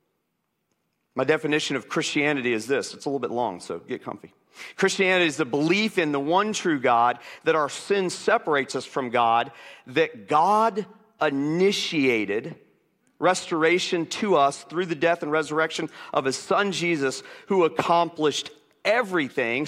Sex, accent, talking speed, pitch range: male, American, 145 wpm, 140-195 Hz